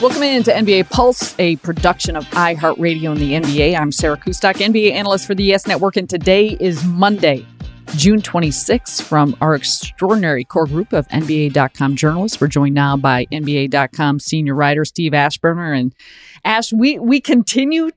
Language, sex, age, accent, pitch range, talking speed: English, female, 30-49, American, 145-195 Hz, 165 wpm